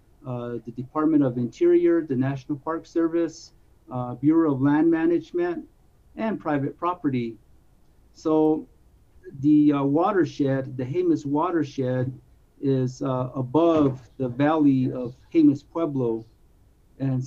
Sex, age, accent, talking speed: male, 50-69, American, 115 wpm